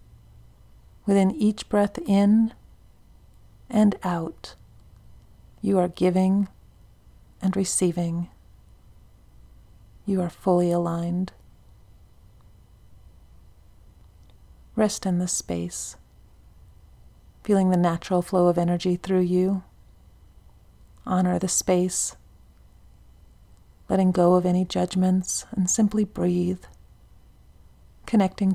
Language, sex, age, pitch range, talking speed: English, female, 40-59, 170-190 Hz, 80 wpm